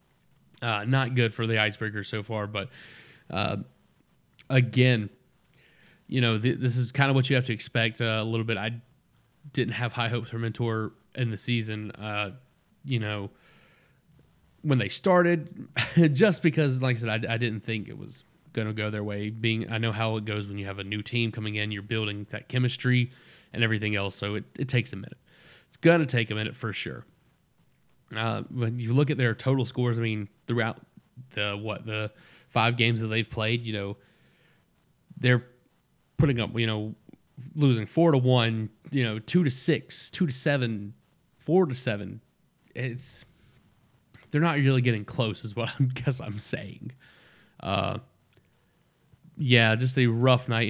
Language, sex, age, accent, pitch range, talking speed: English, male, 30-49, American, 110-130 Hz, 180 wpm